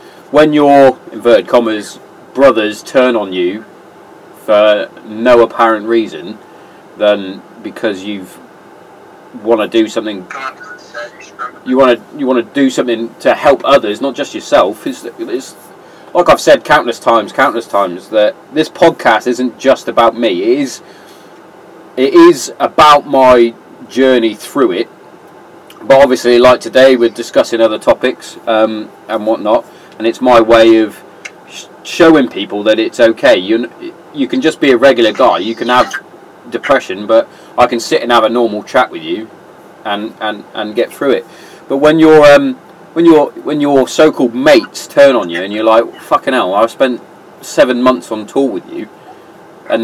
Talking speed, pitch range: 160 wpm, 110-140 Hz